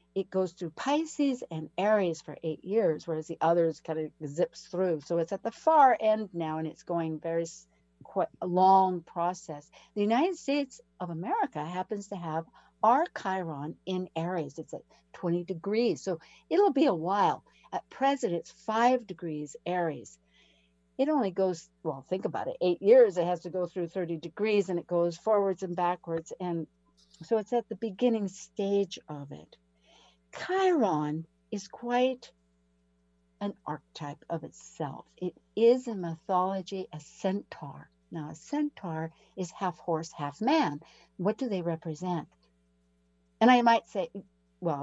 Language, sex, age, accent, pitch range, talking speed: English, female, 60-79, American, 160-205 Hz, 160 wpm